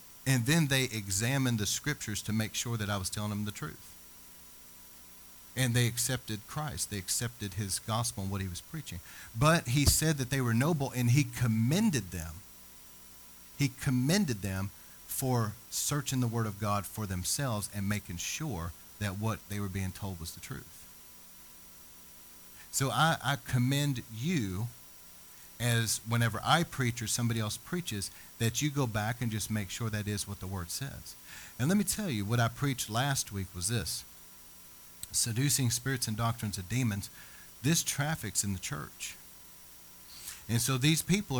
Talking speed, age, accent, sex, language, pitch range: 170 wpm, 40-59, American, male, English, 90-130 Hz